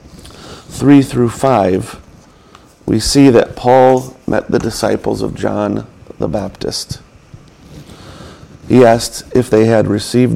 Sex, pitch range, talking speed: male, 110-130 Hz, 115 wpm